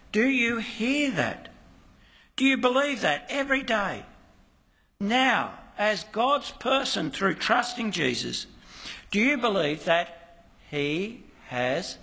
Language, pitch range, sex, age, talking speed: English, 160-235 Hz, male, 60-79, 115 wpm